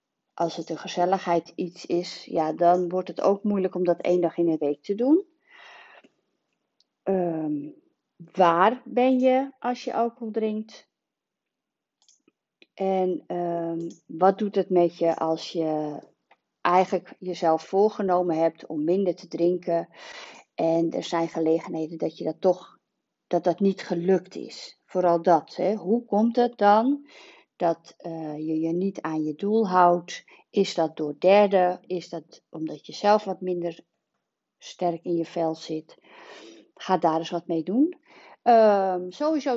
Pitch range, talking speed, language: 165-210 Hz, 150 wpm, Dutch